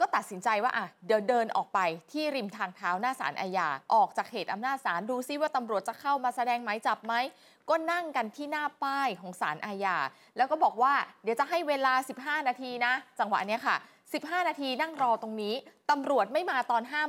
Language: Thai